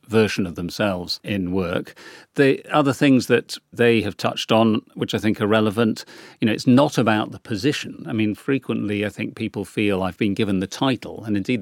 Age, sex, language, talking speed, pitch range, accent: 40-59, male, English, 200 wpm, 95-115 Hz, British